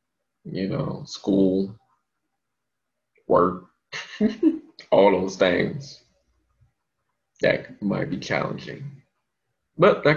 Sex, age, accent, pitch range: male, 20-39, American, 95-130 Hz